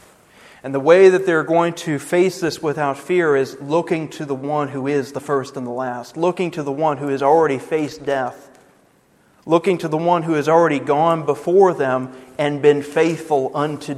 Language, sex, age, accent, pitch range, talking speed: English, male, 40-59, American, 135-155 Hz, 200 wpm